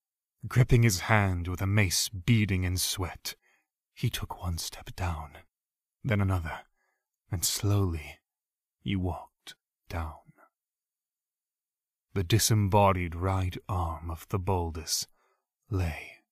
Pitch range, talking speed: 90-110 Hz, 105 wpm